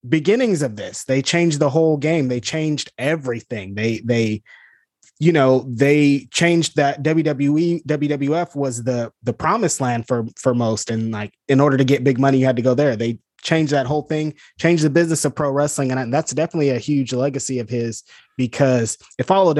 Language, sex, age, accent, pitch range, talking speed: English, male, 20-39, American, 125-155 Hz, 195 wpm